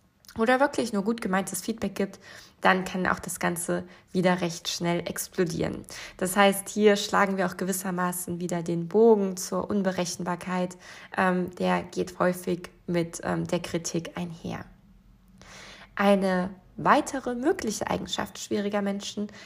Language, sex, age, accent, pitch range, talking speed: German, female, 20-39, German, 180-205 Hz, 125 wpm